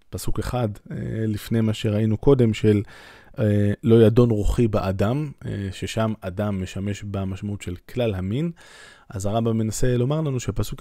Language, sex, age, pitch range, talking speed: Hebrew, male, 20-39, 100-125 Hz, 135 wpm